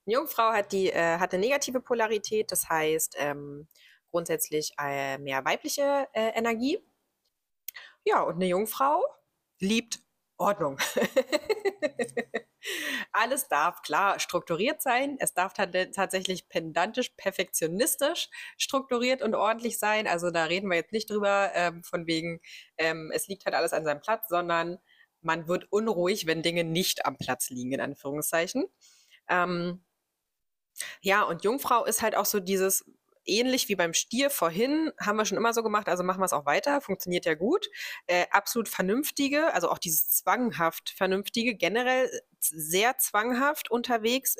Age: 30-49